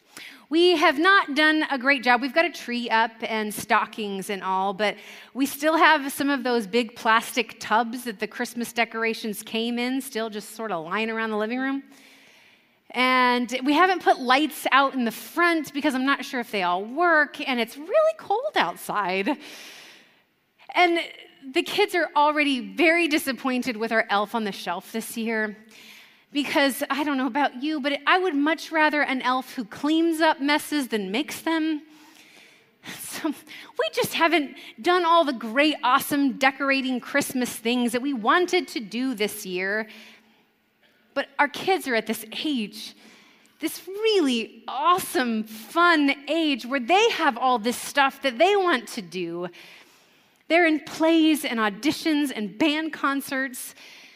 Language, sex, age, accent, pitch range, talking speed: English, female, 30-49, American, 225-310 Hz, 165 wpm